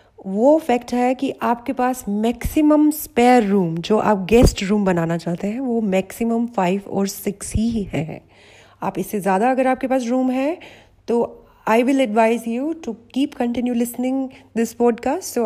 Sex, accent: female, native